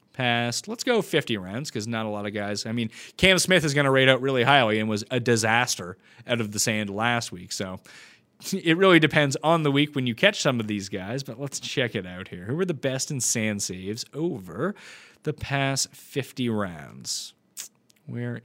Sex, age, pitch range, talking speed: male, 30-49, 115-155 Hz, 210 wpm